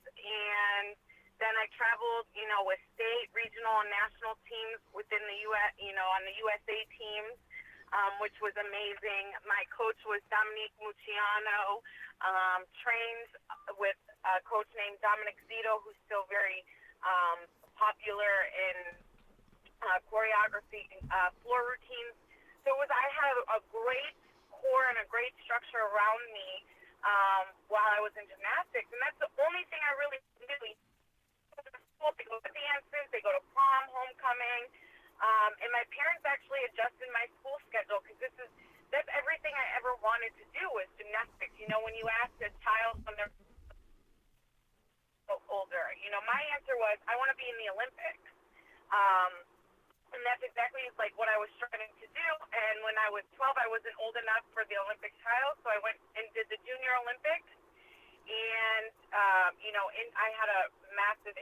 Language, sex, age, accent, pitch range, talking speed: English, female, 30-49, American, 205-255 Hz, 170 wpm